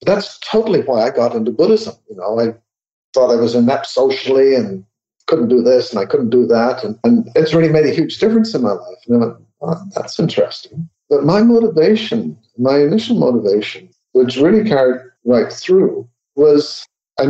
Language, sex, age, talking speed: English, male, 50-69, 185 wpm